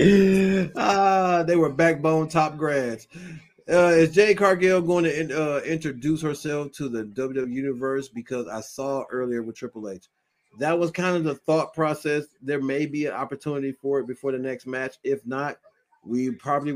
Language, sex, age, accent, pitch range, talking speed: English, male, 30-49, American, 120-170 Hz, 175 wpm